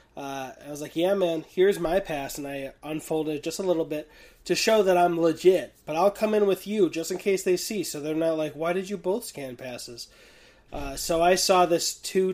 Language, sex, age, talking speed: English, male, 20-39, 235 wpm